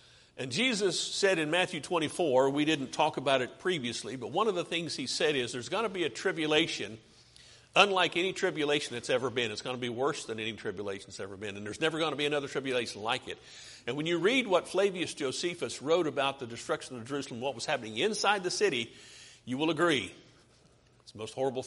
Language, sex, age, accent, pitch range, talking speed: English, male, 50-69, American, 125-170 Hz, 220 wpm